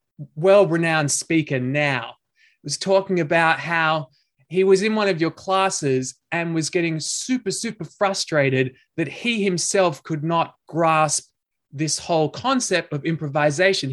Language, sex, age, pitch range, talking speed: English, male, 20-39, 150-195 Hz, 135 wpm